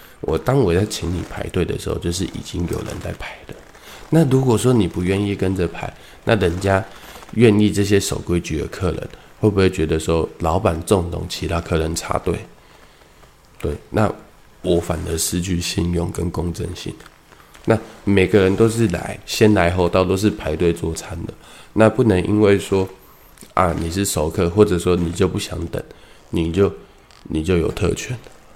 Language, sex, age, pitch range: Chinese, male, 20-39, 85-105 Hz